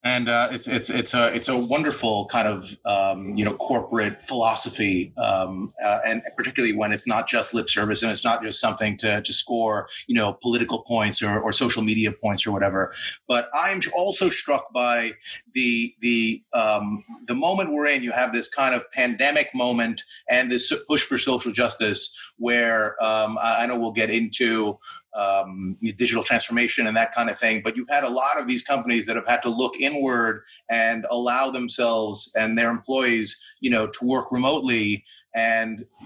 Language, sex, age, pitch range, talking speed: English, male, 30-49, 115-130 Hz, 185 wpm